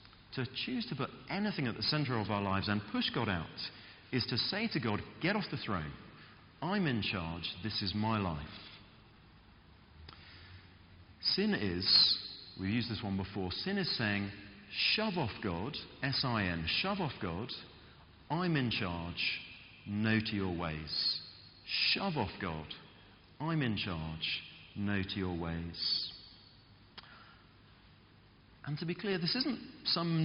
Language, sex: English, male